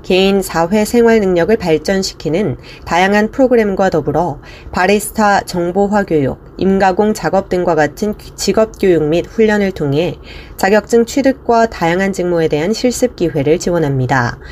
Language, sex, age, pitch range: Korean, female, 30-49, 160-215 Hz